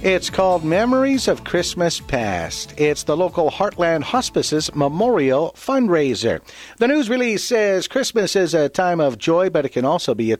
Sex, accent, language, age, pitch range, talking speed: male, American, English, 50-69, 115-180 Hz, 165 wpm